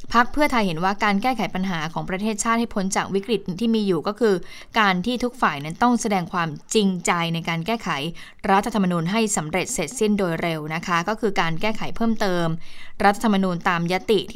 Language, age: Thai, 20-39